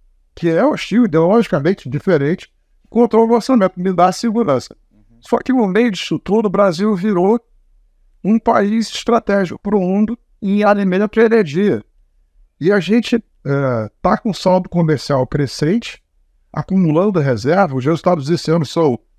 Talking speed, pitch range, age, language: 145 wpm, 145-210 Hz, 60-79, Portuguese